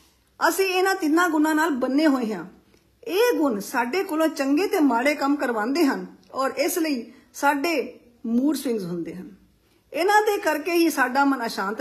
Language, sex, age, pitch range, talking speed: Punjabi, female, 50-69, 235-320 Hz, 170 wpm